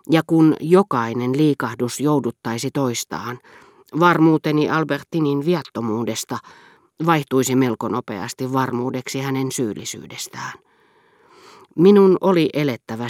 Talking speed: 80 wpm